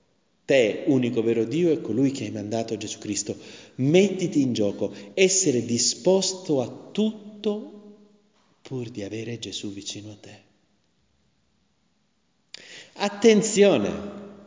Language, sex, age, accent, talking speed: Italian, male, 40-59, native, 110 wpm